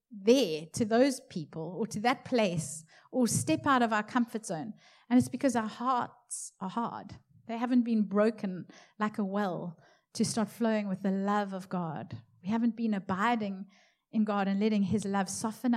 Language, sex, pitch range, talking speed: English, female, 185-230 Hz, 185 wpm